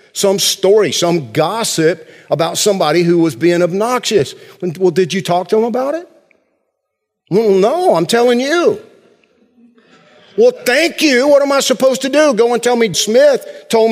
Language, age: English, 50-69